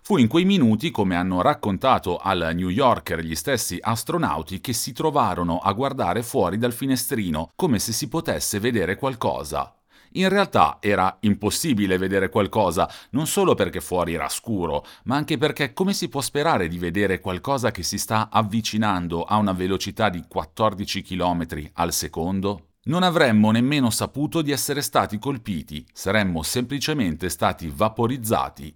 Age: 40-59